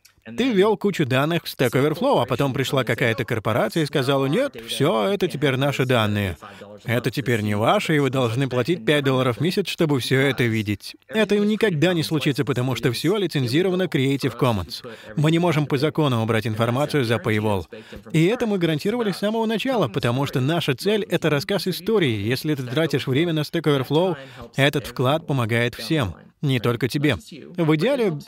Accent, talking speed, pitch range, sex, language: native, 180 wpm, 125-175 Hz, male, Russian